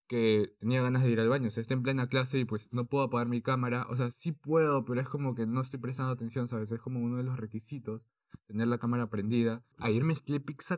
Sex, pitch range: male, 115-135 Hz